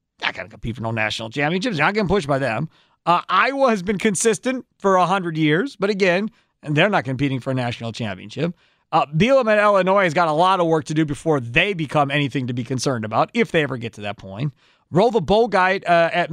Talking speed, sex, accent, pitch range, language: 235 wpm, male, American, 150-215 Hz, English